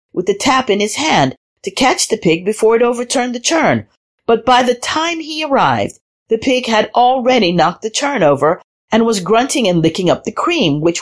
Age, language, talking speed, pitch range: 50-69, English, 205 wpm, 175-240 Hz